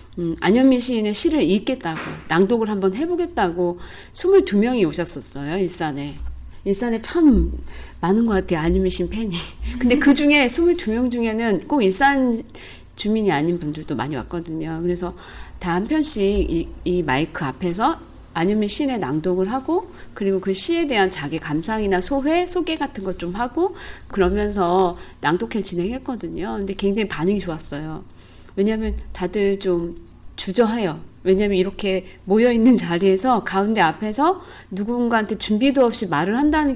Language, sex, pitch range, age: Korean, female, 175-255 Hz, 40-59